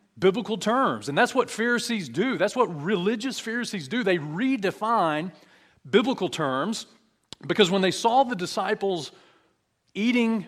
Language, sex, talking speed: English, male, 130 wpm